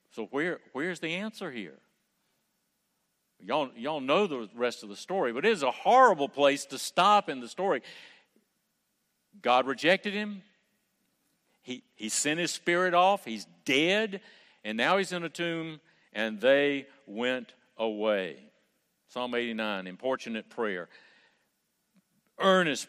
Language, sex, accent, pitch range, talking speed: English, male, American, 125-190 Hz, 135 wpm